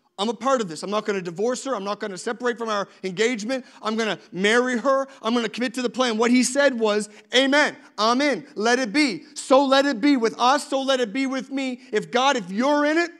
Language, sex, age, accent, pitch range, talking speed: English, male, 40-59, American, 195-250 Hz, 270 wpm